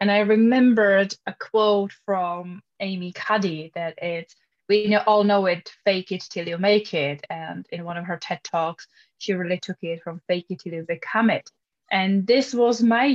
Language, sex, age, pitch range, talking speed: English, female, 10-29, 175-210 Hz, 190 wpm